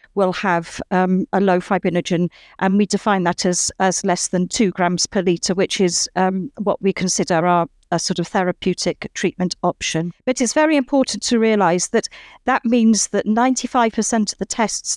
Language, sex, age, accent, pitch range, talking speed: English, female, 40-59, British, 185-225 Hz, 190 wpm